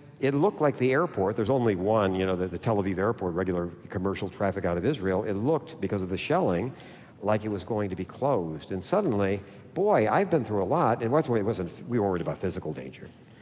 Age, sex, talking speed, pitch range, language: 50-69, male, 220 wpm, 95-130 Hz, English